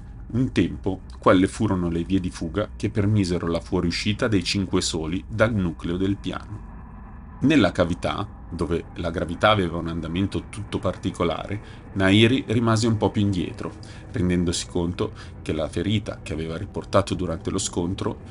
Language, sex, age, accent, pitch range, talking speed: Italian, male, 30-49, native, 90-105 Hz, 150 wpm